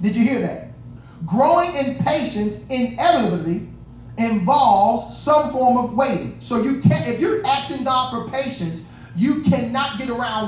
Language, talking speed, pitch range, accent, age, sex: English, 150 wpm, 185-250 Hz, American, 40-59, male